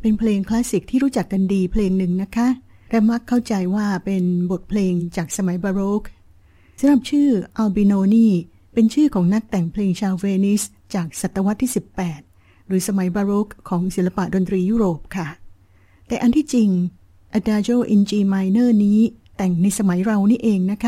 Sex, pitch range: female, 185-225 Hz